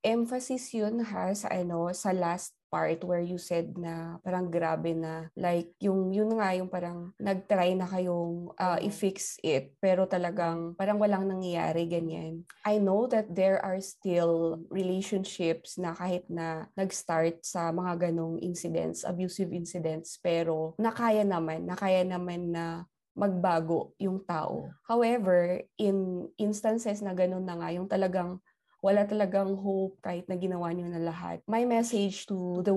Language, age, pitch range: Filipino, 20-39, 170-200 Hz